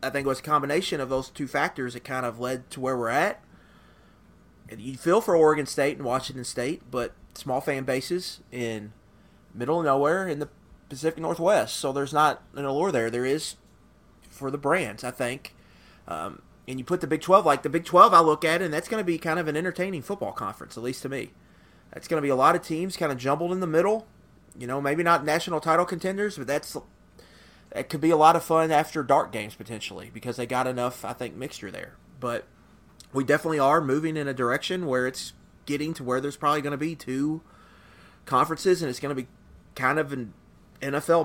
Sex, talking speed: male, 220 wpm